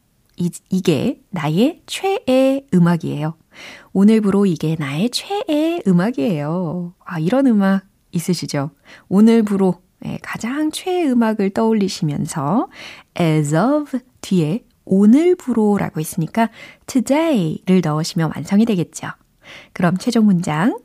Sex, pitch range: female, 170-250 Hz